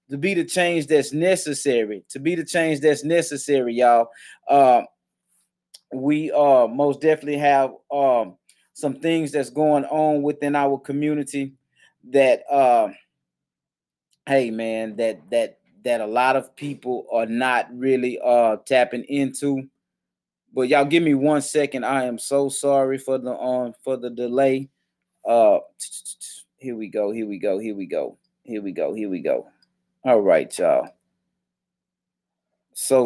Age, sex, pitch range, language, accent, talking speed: 20-39, male, 120-180 Hz, English, American, 150 wpm